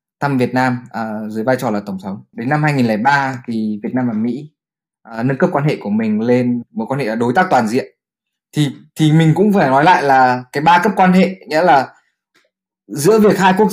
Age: 20-39